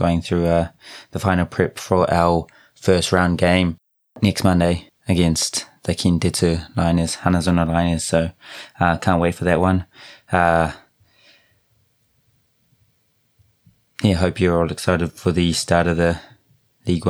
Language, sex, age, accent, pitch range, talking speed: English, male, 20-39, British, 85-95 Hz, 135 wpm